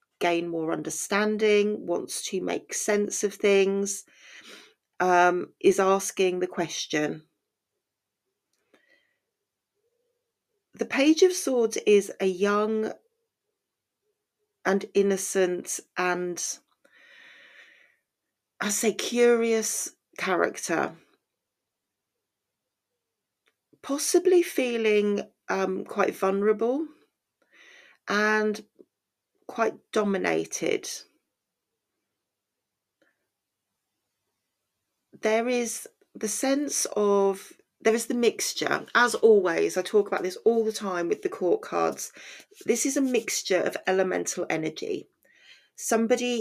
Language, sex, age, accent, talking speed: English, female, 40-59, British, 85 wpm